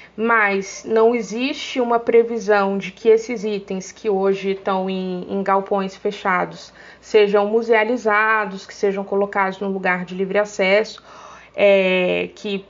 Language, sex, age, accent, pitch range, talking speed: Portuguese, female, 20-39, Brazilian, 190-230 Hz, 130 wpm